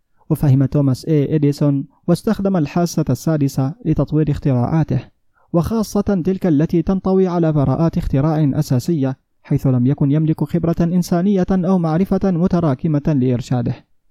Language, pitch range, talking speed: Arabic, 140-175 Hz, 115 wpm